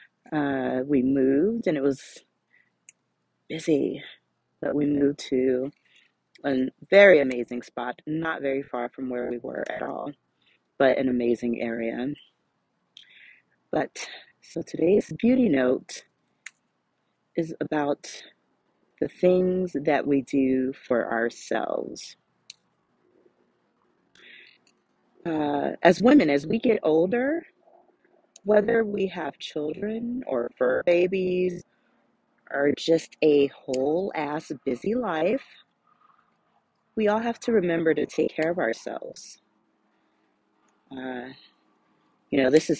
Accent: American